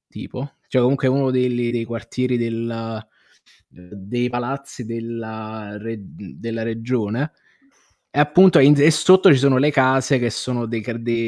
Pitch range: 110-135 Hz